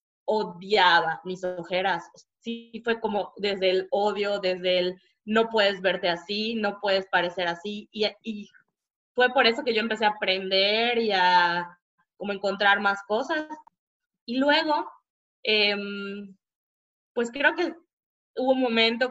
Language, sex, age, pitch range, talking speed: Spanish, female, 20-39, 195-230 Hz, 140 wpm